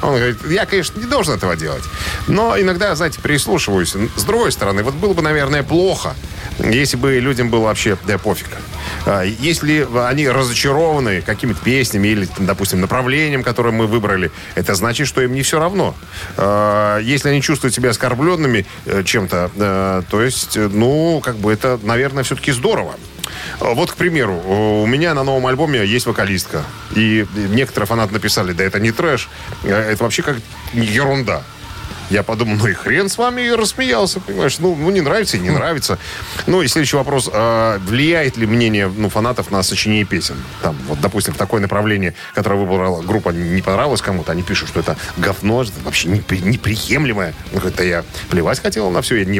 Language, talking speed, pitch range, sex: Russian, 175 wpm, 100-135 Hz, male